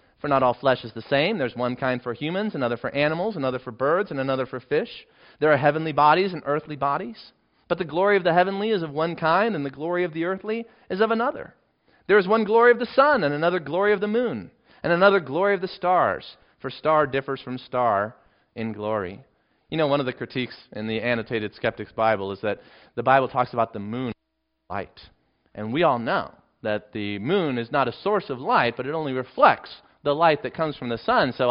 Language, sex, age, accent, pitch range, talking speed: English, male, 30-49, American, 130-195 Hz, 225 wpm